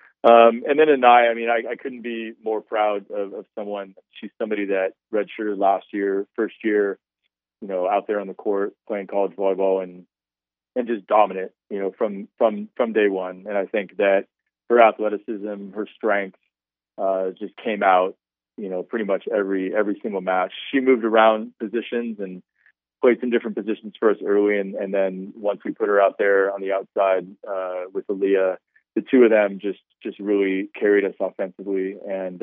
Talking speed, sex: 190 wpm, male